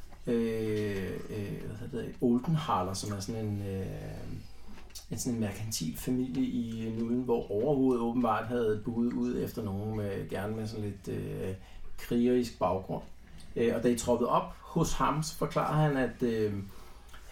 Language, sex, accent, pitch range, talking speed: Danish, male, native, 100-130 Hz, 150 wpm